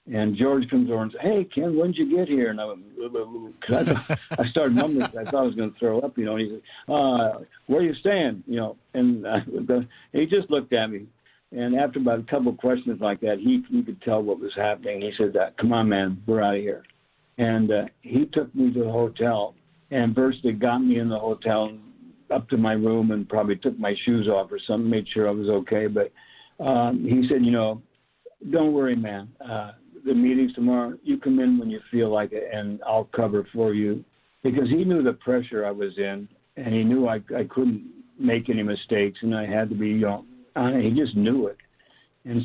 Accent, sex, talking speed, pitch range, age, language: American, male, 235 wpm, 110-130 Hz, 60-79, English